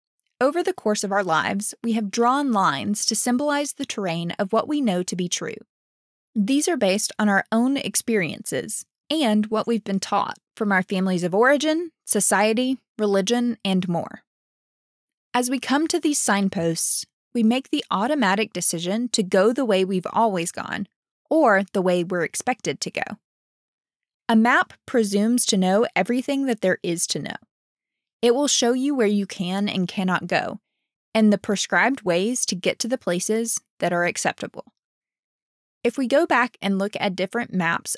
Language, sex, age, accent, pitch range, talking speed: English, female, 20-39, American, 195-250 Hz, 170 wpm